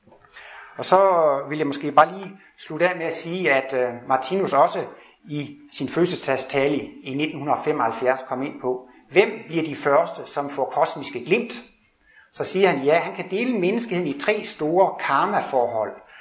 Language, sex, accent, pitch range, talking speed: Danish, male, native, 140-195 Hz, 160 wpm